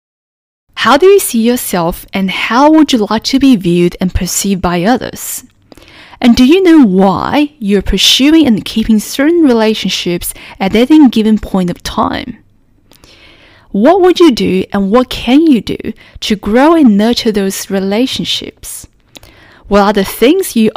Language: English